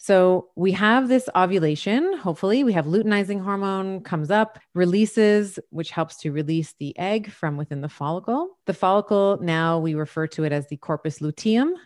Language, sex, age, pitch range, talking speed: English, female, 30-49, 150-185 Hz, 170 wpm